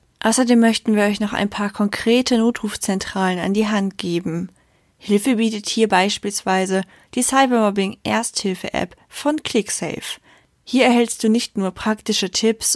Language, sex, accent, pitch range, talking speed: German, female, German, 190-230 Hz, 130 wpm